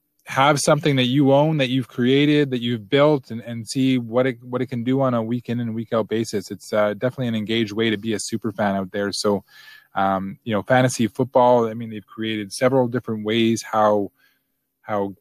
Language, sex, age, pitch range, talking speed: English, male, 20-39, 105-125 Hz, 215 wpm